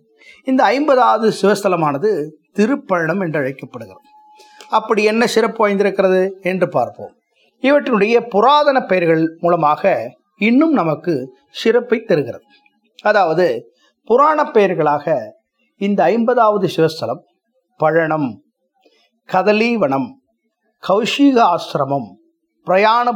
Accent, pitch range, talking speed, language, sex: Indian, 170-260 Hz, 80 wpm, English, male